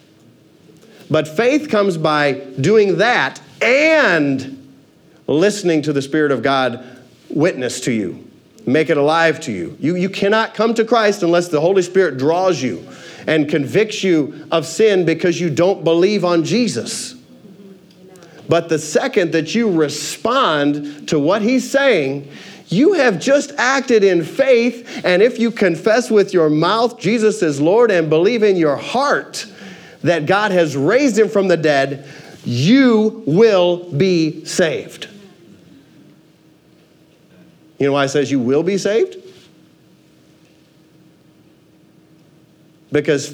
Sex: male